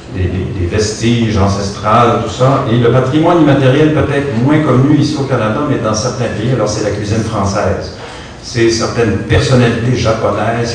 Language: French